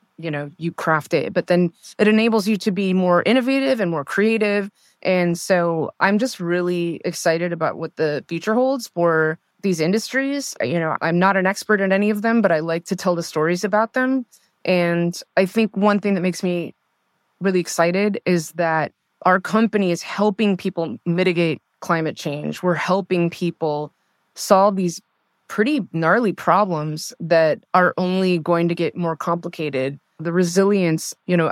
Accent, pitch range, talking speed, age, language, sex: American, 165-200 Hz, 170 wpm, 20-39, English, female